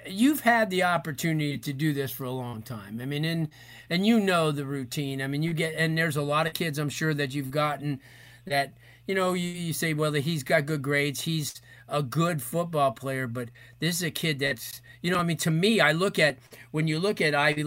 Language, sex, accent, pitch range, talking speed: English, male, American, 135-170 Hz, 240 wpm